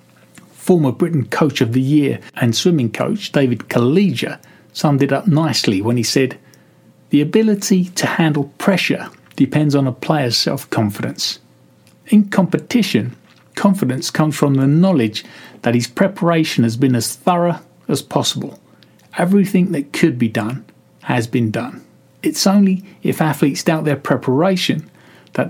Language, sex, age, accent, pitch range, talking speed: English, male, 40-59, British, 120-175 Hz, 140 wpm